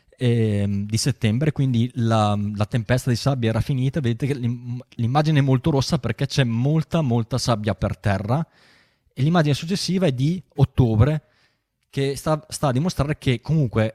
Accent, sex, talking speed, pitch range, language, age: native, male, 155 wpm, 105-135 Hz, Italian, 20-39